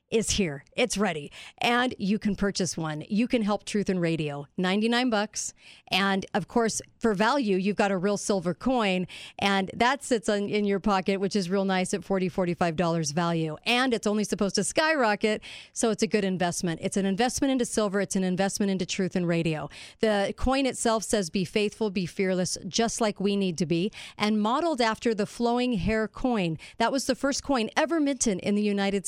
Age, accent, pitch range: 50-69, American, 185-220 Hz